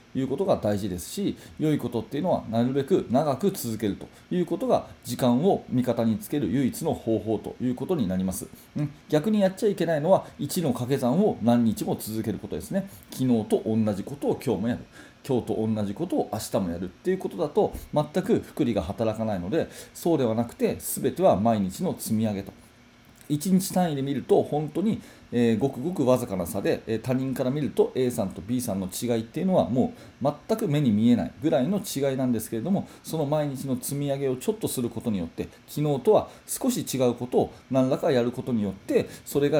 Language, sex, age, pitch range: Japanese, male, 40-59, 110-150 Hz